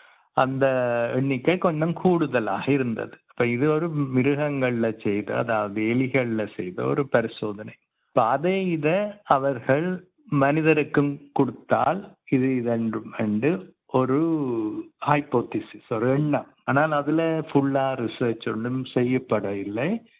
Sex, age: male, 50-69